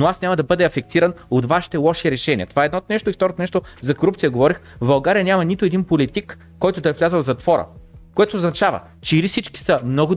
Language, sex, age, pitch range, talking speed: Bulgarian, male, 30-49, 155-205 Hz, 230 wpm